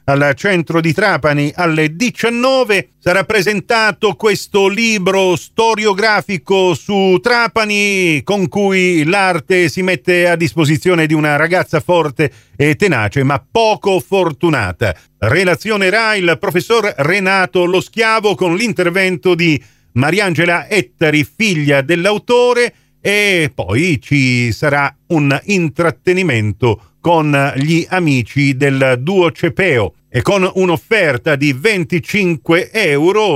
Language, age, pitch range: Italian, 40-59, 145-200 Hz